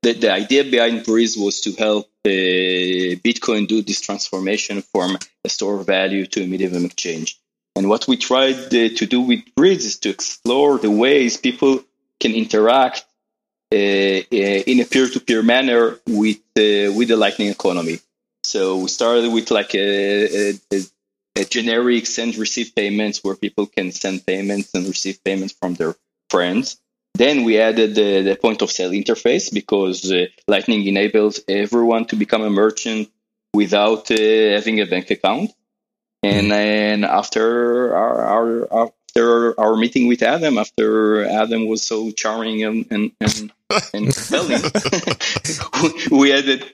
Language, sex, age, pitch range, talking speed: English, male, 30-49, 100-115 Hz, 150 wpm